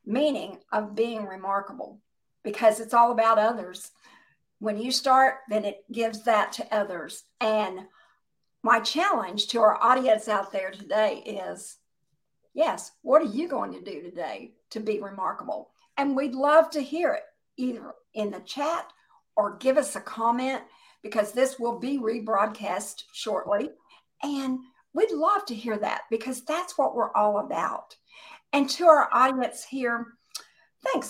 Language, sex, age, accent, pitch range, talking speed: English, female, 50-69, American, 215-280 Hz, 150 wpm